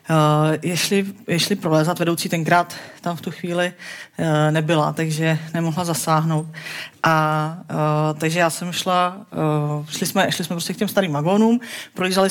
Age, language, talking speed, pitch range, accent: 40-59, Czech, 160 wpm, 160-190 Hz, native